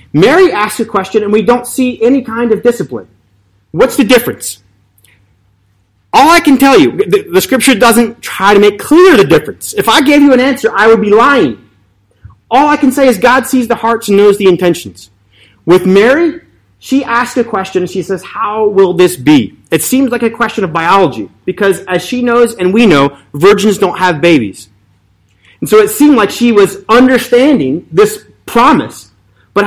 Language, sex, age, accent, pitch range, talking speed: English, male, 30-49, American, 170-235 Hz, 190 wpm